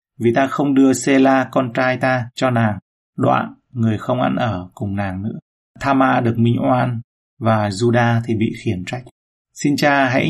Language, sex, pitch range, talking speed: Vietnamese, male, 115-135 Hz, 180 wpm